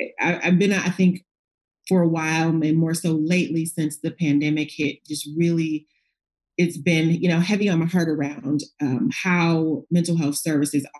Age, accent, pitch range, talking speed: 30-49, American, 150-190 Hz, 170 wpm